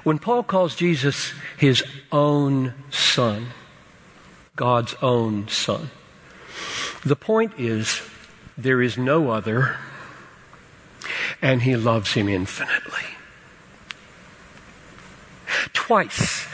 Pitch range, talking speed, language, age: 120-165 Hz, 85 wpm, English, 60-79